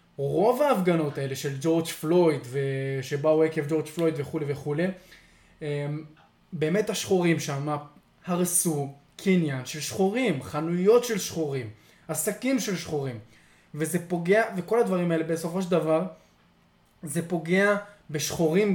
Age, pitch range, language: 20-39, 150-190 Hz, Hebrew